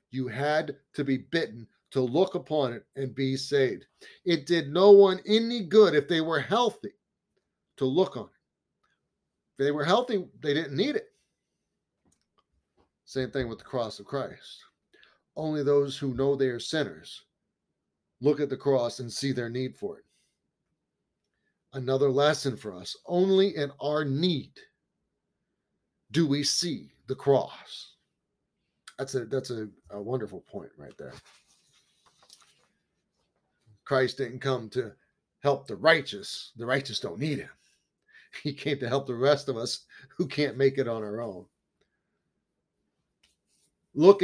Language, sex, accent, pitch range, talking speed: English, male, American, 130-155 Hz, 145 wpm